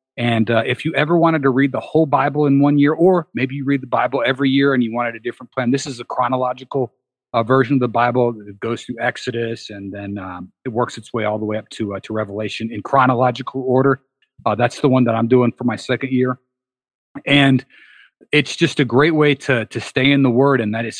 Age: 40-59